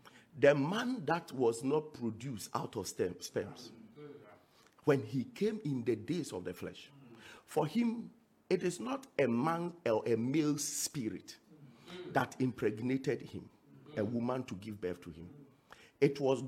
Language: English